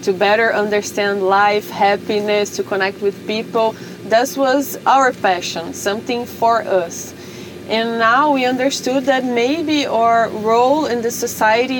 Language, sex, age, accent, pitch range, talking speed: English, female, 20-39, Brazilian, 205-245 Hz, 135 wpm